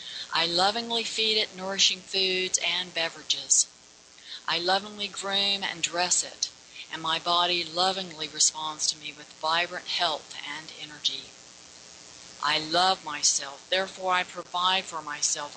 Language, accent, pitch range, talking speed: English, American, 155-190 Hz, 130 wpm